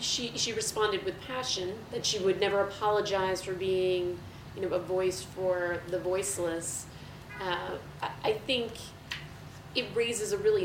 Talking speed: 145 wpm